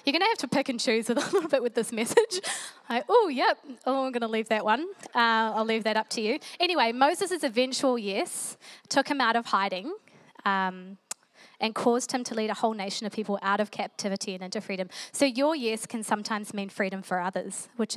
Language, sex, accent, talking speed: English, female, Australian, 220 wpm